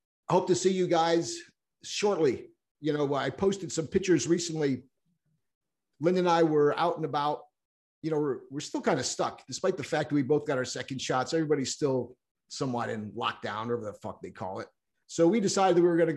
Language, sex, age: English, male, 50-69